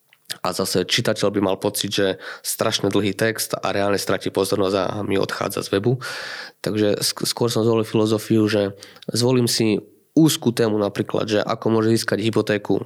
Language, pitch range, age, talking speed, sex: Slovak, 100-115 Hz, 20-39, 165 wpm, male